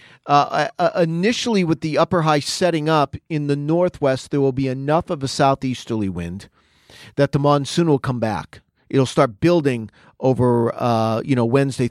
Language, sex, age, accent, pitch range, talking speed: English, male, 40-59, American, 130-150 Hz, 170 wpm